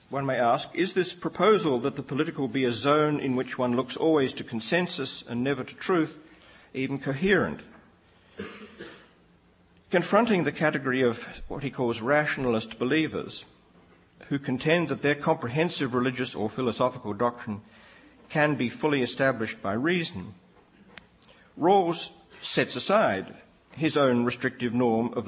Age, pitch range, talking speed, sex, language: 50-69, 115-145 Hz, 135 wpm, male, English